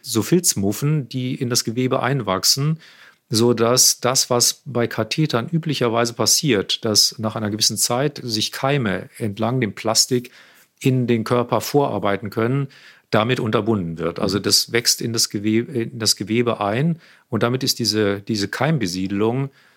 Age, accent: 40-59, German